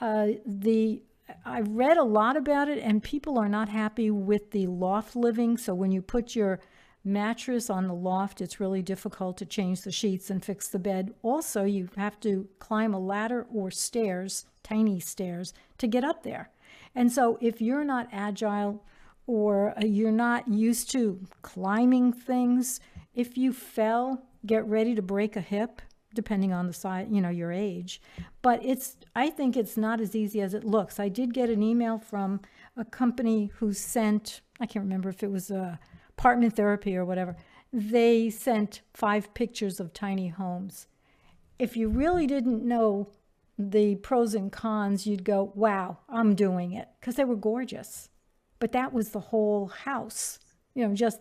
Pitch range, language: 200-235 Hz, English